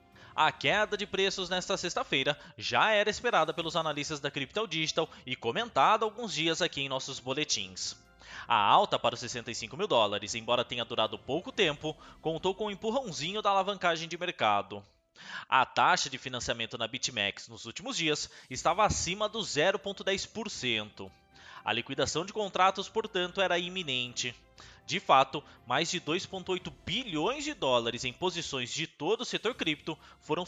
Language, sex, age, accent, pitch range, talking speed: Portuguese, male, 20-39, Brazilian, 120-195 Hz, 155 wpm